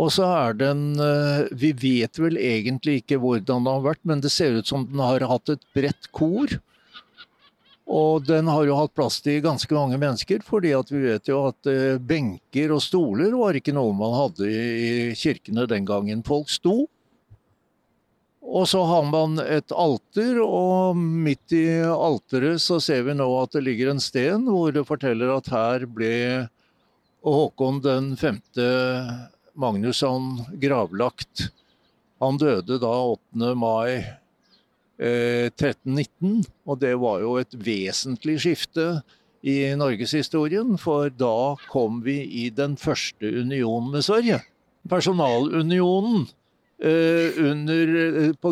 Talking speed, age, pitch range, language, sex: 140 wpm, 60-79, 125-160 Hz, English, male